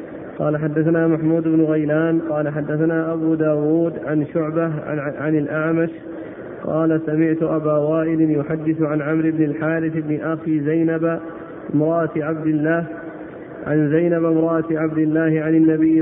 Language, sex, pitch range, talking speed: Arabic, male, 155-165 Hz, 130 wpm